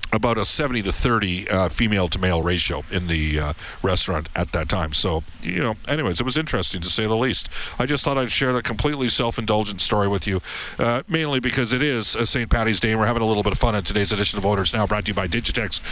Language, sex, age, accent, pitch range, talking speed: English, male, 50-69, American, 105-150 Hz, 245 wpm